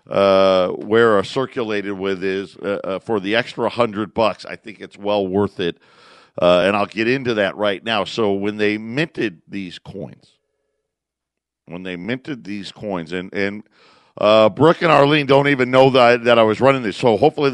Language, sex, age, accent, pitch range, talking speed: English, male, 50-69, American, 105-145 Hz, 190 wpm